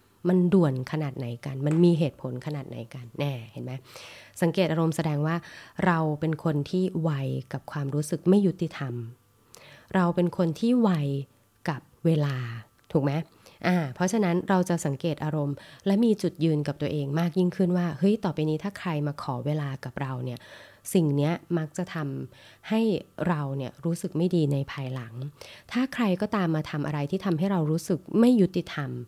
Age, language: 20-39, English